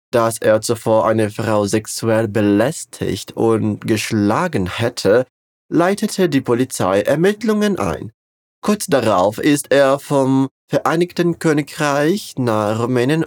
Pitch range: 110-160 Hz